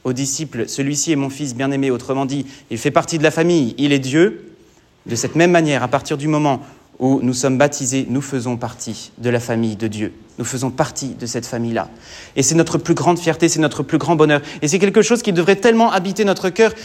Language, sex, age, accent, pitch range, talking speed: French, male, 30-49, French, 130-165 Hz, 240 wpm